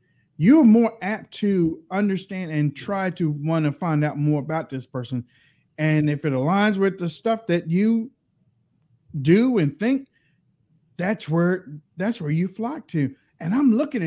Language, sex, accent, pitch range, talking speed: English, male, American, 150-200 Hz, 160 wpm